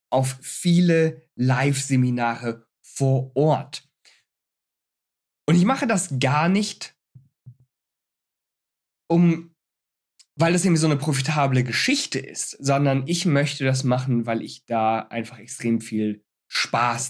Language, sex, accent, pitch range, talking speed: German, male, German, 125-150 Hz, 110 wpm